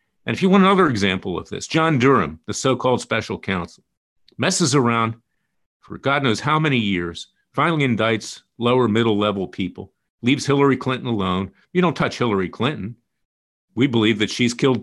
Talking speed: 170 wpm